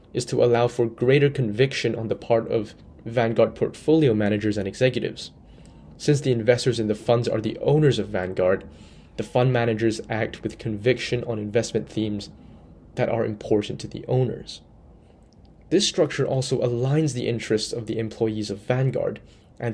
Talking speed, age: 160 wpm, 20-39